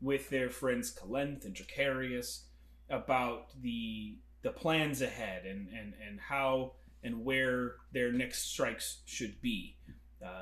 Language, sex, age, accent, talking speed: English, male, 30-49, American, 130 wpm